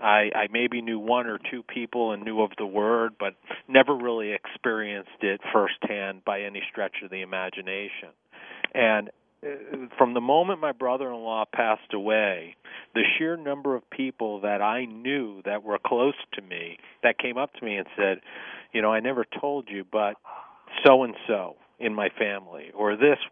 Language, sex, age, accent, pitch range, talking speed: English, male, 40-59, American, 105-125 Hz, 170 wpm